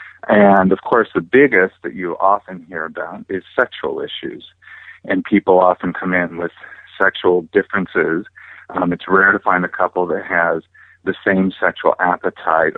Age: 50-69